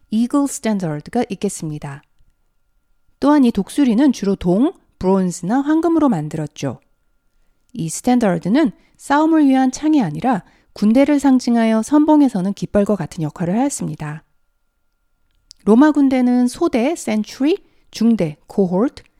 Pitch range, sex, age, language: 175-260 Hz, female, 40-59, Korean